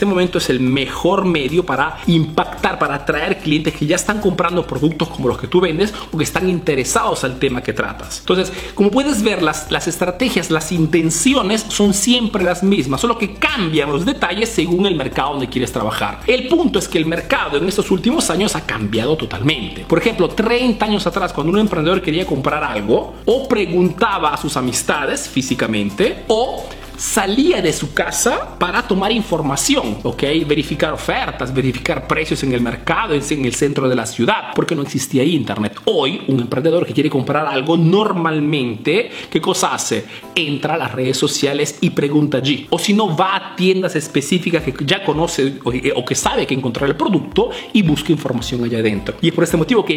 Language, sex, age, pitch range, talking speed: Spanish, male, 40-59, 140-195 Hz, 185 wpm